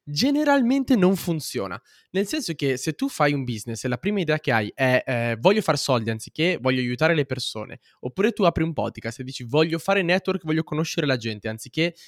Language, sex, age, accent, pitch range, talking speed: Italian, male, 20-39, native, 135-180 Hz, 210 wpm